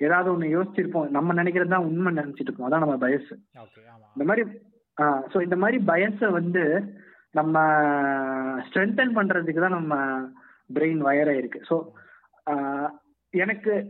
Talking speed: 115 wpm